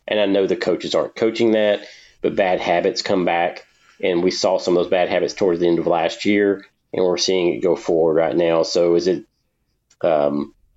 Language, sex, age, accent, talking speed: English, male, 30-49, American, 215 wpm